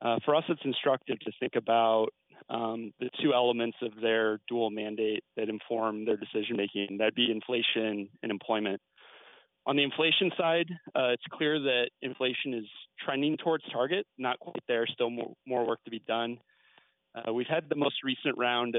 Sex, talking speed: male, 180 wpm